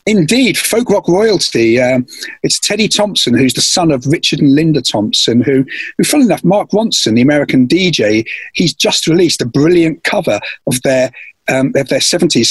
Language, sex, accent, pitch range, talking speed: English, male, British, 125-165 Hz, 180 wpm